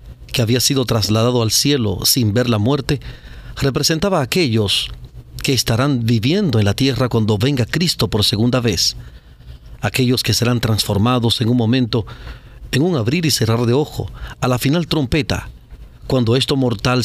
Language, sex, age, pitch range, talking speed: Spanish, male, 40-59, 105-130 Hz, 160 wpm